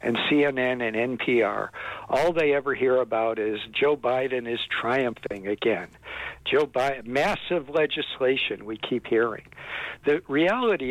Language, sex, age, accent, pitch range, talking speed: English, male, 60-79, American, 125-155 Hz, 130 wpm